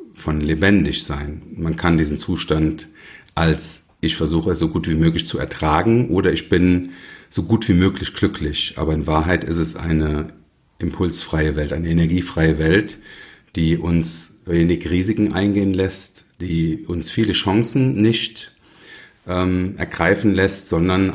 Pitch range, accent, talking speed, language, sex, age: 80-95 Hz, German, 145 wpm, German, male, 40-59